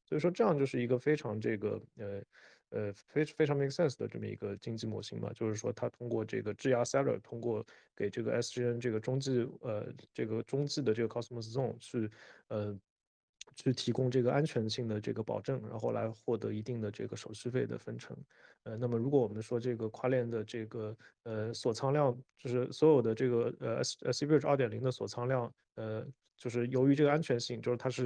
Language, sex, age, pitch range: Chinese, male, 20-39, 110-130 Hz